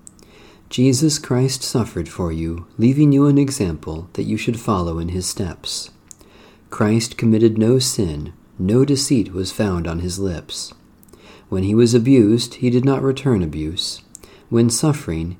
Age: 50-69